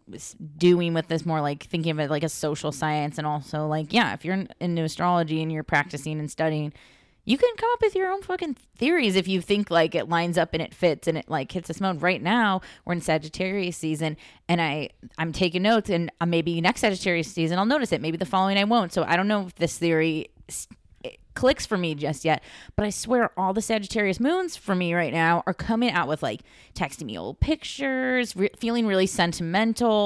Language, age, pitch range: English, 20-39, 160-215 Hz